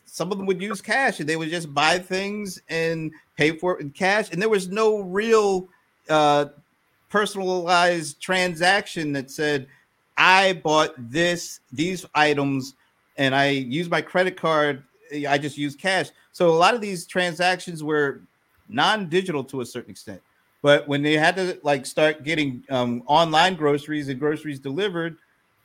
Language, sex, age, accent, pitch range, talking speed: English, male, 50-69, American, 135-175 Hz, 160 wpm